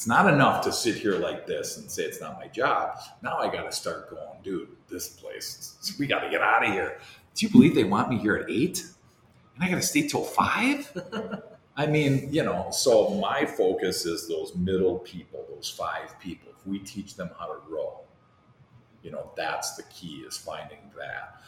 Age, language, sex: 50-69, English, male